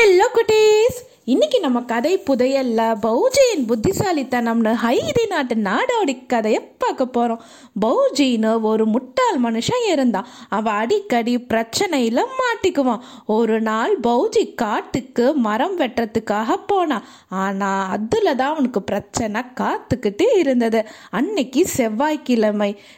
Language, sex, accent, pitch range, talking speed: Tamil, female, native, 230-345 Hz, 65 wpm